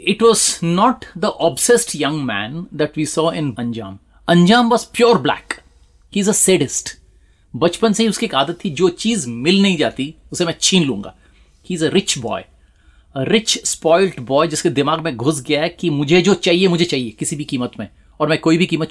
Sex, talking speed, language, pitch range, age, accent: male, 205 wpm, Hindi, 115-185 Hz, 30-49, native